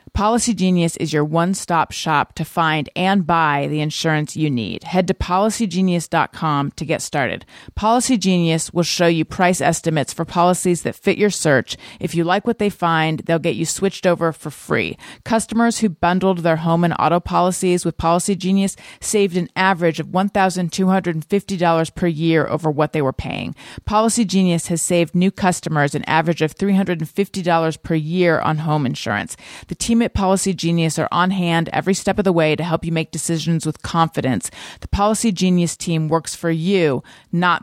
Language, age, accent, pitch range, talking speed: English, 30-49, American, 160-190 Hz, 180 wpm